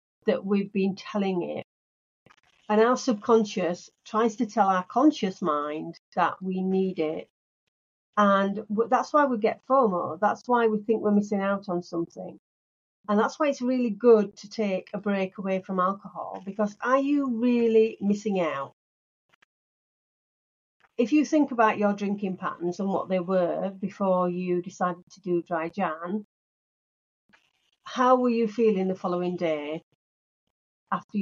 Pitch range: 170-210 Hz